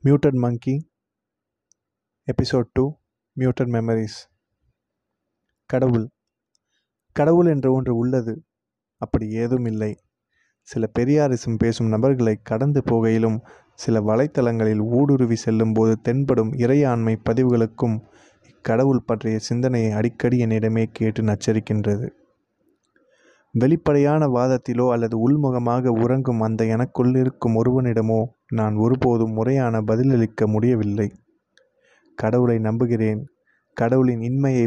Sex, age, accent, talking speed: male, 20-39, native, 95 wpm